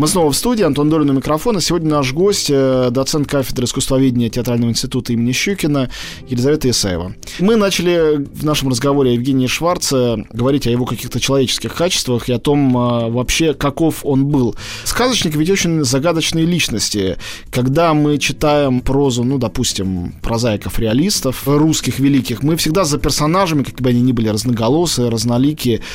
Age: 20-39